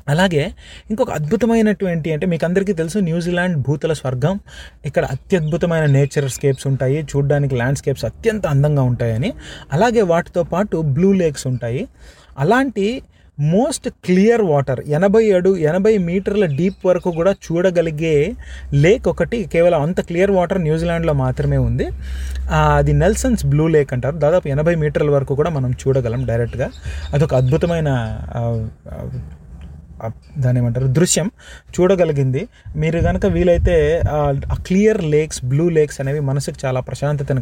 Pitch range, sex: 130-185 Hz, male